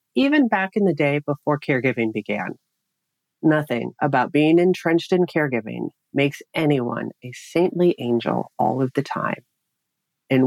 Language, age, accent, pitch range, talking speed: English, 40-59, American, 130-170 Hz, 140 wpm